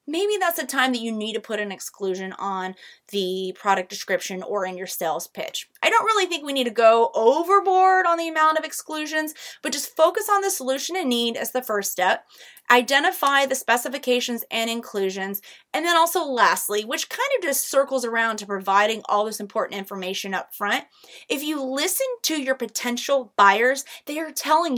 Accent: American